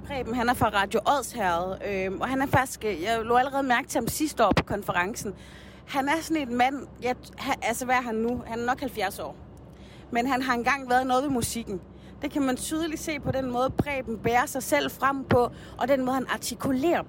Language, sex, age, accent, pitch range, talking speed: Danish, female, 30-49, native, 205-260 Hz, 230 wpm